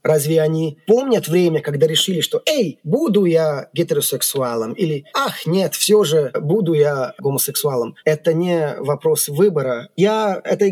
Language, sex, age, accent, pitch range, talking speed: Russian, male, 20-39, native, 145-175 Hz, 145 wpm